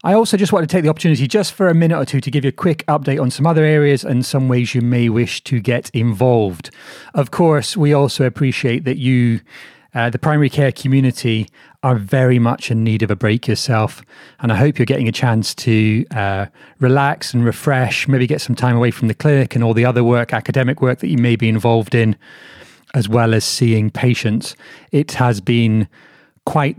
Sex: male